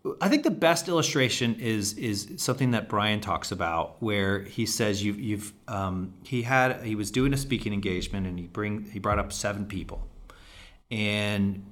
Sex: male